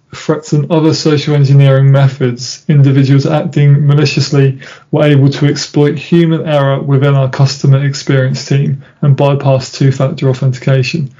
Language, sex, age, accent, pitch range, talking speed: English, male, 20-39, British, 135-155 Hz, 130 wpm